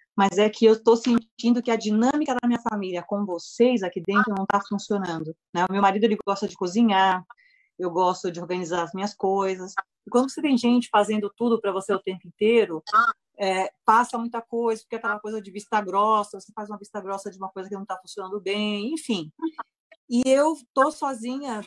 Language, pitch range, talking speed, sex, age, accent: Portuguese, 190-235 Hz, 210 wpm, female, 30-49, Brazilian